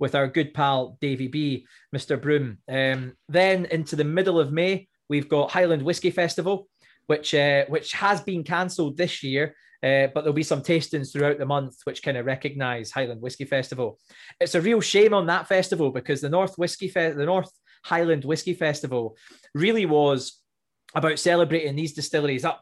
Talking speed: 180 wpm